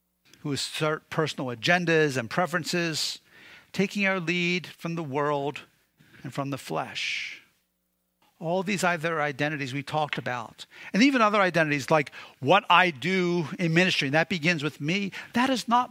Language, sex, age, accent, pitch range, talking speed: English, male, 50-69, American, 145-195 Hz, 155 wpm